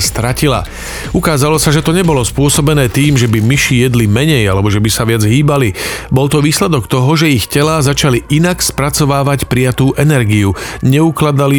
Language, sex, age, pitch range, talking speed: Slovak, male, 40-59, 115-140 Hz, 165 wpm